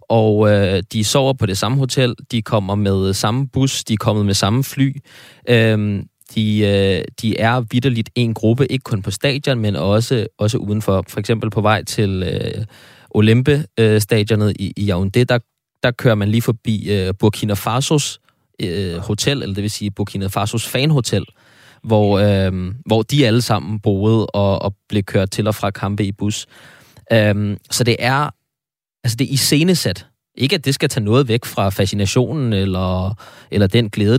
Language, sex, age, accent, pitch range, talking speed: Danish, male, 20-39, native, 100-125 Hz, 180 wpm